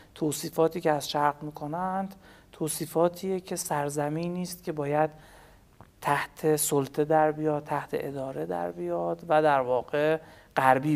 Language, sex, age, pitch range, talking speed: English, male, 50-69, 145-175 Hz, 125 wpm